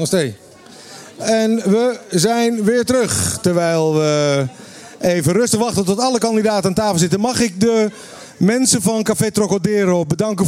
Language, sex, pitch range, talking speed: Dutch, male, 155-205 Hz, 135 wpm